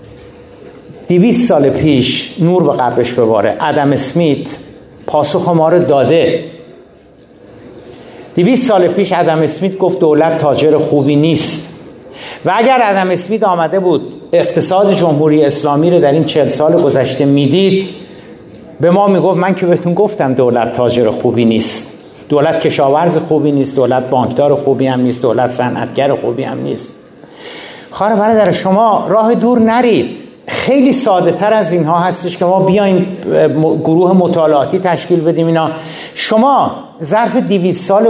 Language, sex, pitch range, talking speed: Persian, male, 150-195 Hz, 140 wpm